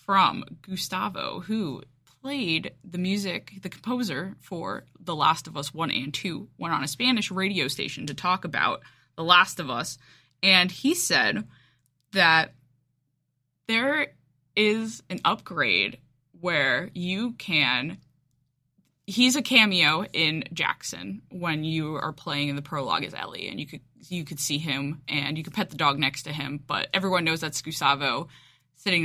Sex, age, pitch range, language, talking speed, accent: female, 20-39, 140-200 Hz, English, 155 wpm, American